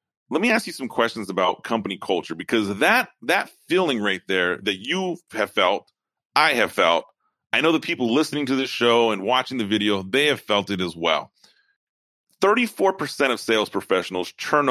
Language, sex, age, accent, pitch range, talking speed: English, male, 30-49, American, 110-140 Hz, 185 wpm